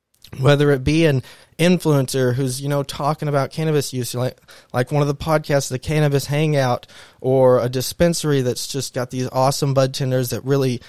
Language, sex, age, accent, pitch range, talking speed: English, male, 20-39, American, 125-145 Hz, 180 wpm